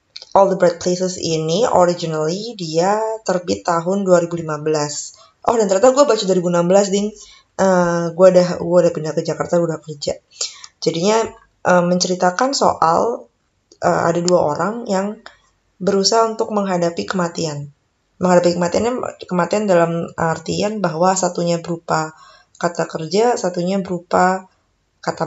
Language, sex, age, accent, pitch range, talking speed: Indonesian, female, 20-39, native, 160-185 Hz, 130 wpm